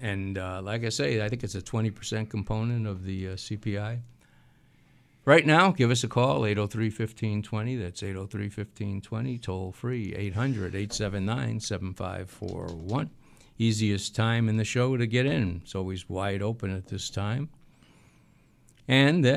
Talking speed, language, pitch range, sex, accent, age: 125 wpm, English, 95-120 Hz, male, American, 60-79